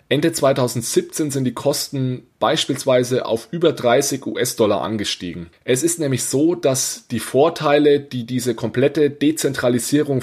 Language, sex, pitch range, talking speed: German, male, 115-150 Hz, 130 wpm